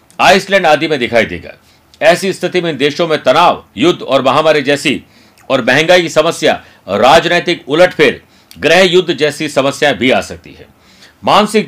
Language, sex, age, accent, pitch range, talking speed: Hindi, male, 60-79, native, 135-170 Hz, 155 wpm